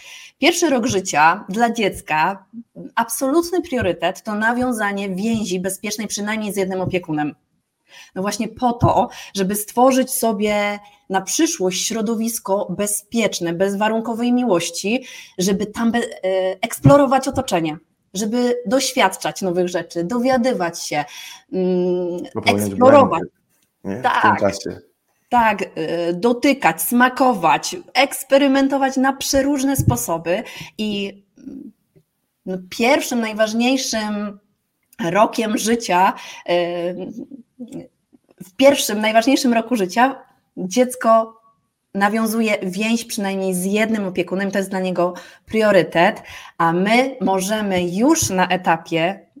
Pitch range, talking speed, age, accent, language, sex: 185-245 Hz, 95 wpm, 20-39, native, Polish, female